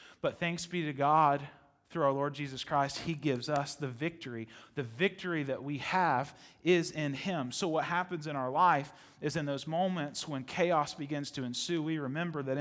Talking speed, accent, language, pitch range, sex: 195 wpm, American, English, 140-170 Hz, male